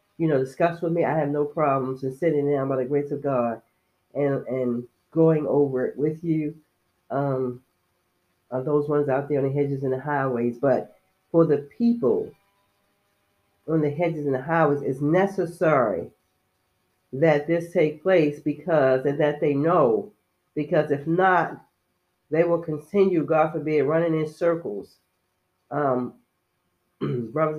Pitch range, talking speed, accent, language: 130-155 Hz, 150 wpm, American, English